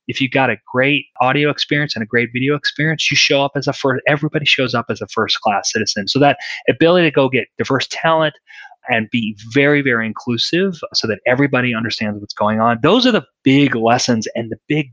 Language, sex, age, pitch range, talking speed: English, male, 30-49, 110-150 Hz, 215 wpm